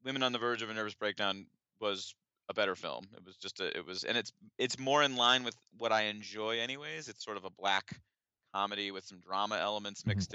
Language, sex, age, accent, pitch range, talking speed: English, male, 30-49, American, 100-120 Hz, 230 wpm